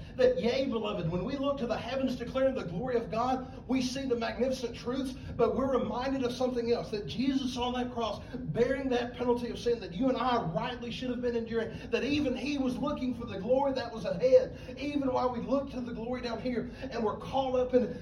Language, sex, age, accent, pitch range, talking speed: English, male, 40-59, American, 210-255 Hz, 230 wpm